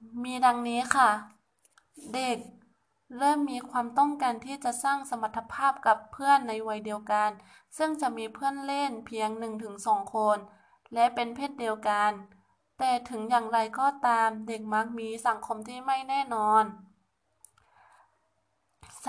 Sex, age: female, 20-39